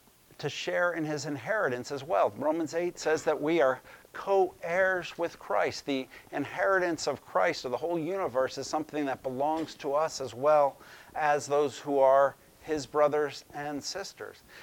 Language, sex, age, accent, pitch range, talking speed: English, male, 50-69, American, 130-170 Hz, 170 wpm